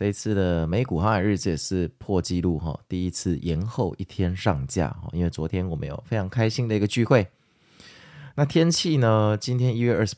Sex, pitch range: male, 85-105 Hz